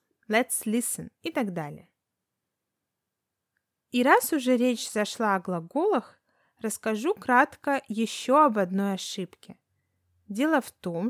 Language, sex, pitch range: Russian, female, 190-255 Hz